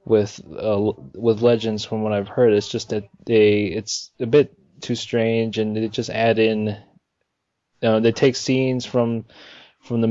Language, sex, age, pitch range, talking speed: English, male, 20-39, 105-115 Hz, 180 wpm